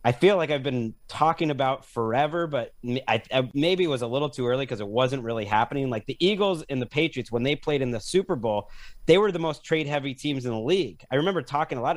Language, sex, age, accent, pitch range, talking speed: English, male, 30-49, American, 105-135 Hz, 250 wpm